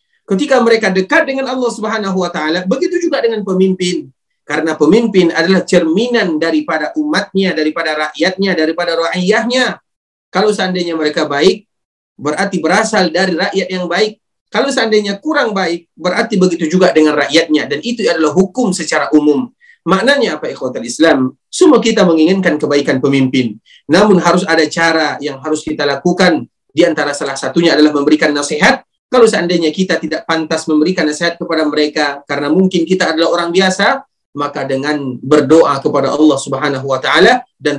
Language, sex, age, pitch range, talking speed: Indonesian, male, 30-49, 150-185 Hz, 150 wpm